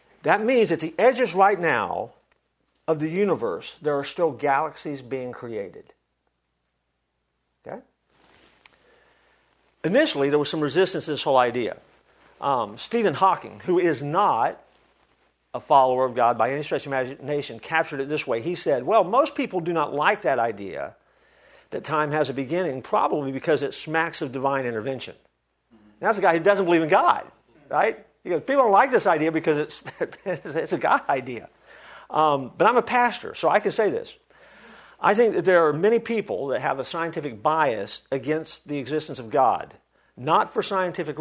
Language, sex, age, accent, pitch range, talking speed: English, male, 50-69, American, 135-180 Hz, 175 wpm